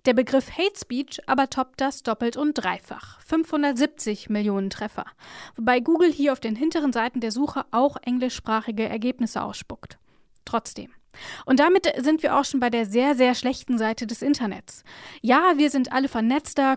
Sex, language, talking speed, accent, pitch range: female, German, 165 wpm, German, 245-295 Hz